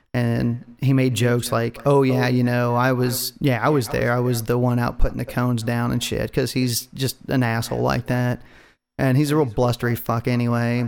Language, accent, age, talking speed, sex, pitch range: English, American, 30-49, 220 wpm, male, 120-135 Hz